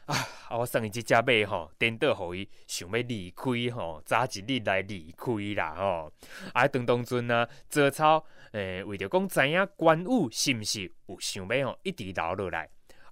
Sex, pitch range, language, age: male, 100-135 Hz, Chinese, 20-39